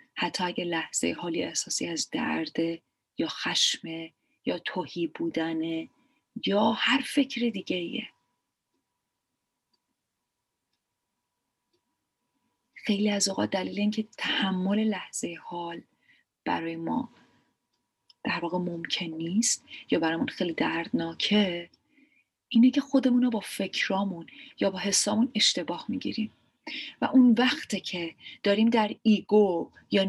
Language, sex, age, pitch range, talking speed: Persian, female, 30-49, 180-245 Hz, 100 wpm